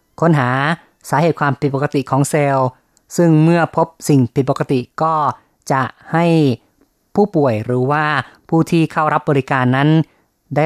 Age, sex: 30-49, female